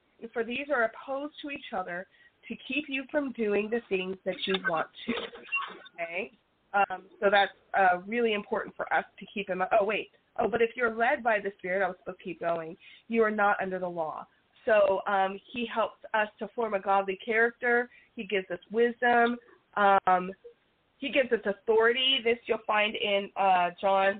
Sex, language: female, English